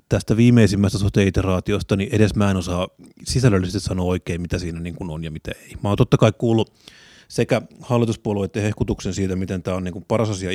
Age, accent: 30-49, native